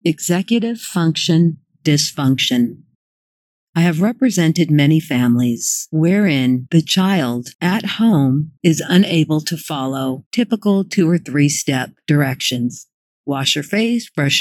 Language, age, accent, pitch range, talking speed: English, 50-69, American, 140-180 Hz, 110 wpm